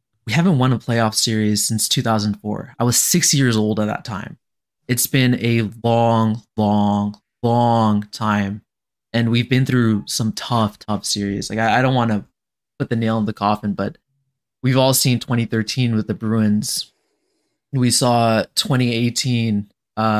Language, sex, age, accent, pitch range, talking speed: English, male, 20-39, American, 110-135 Hz, 155 wpm